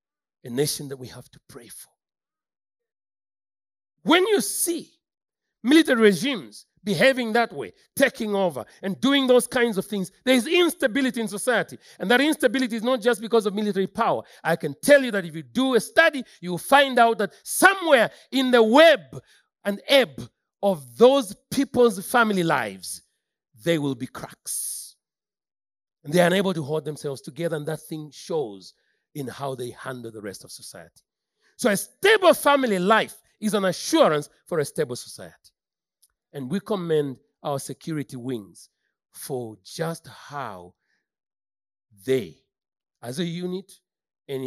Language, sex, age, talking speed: English, male, 40-59, 155 wpm